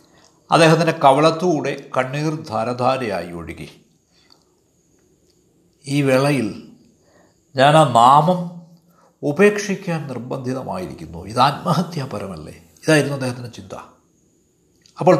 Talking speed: 70 wpm